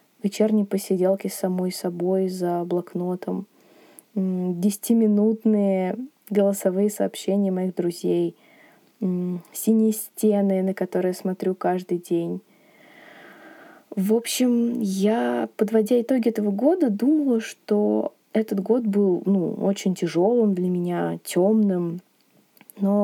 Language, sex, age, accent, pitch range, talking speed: Russian, female, 20-39, native, 190-220 Hz, 100 wpm